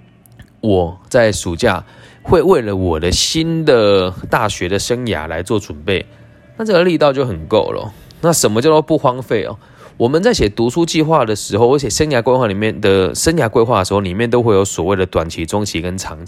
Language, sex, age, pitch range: Chinese, male, 20-39, 95-140 Hz